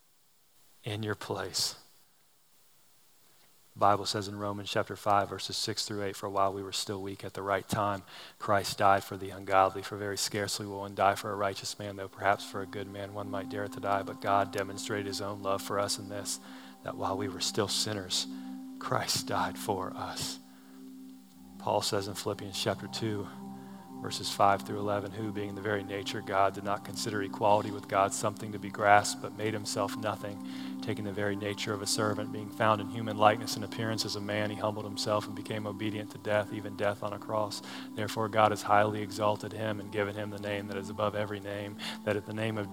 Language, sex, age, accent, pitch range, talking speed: English, male, 40-59, American, 100-105 Hz, 215 wpm